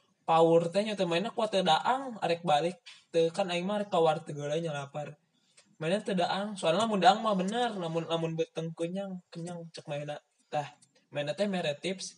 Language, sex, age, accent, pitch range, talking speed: Indonesian, male, 20-39, native, 155-190 Hz, 165 wpm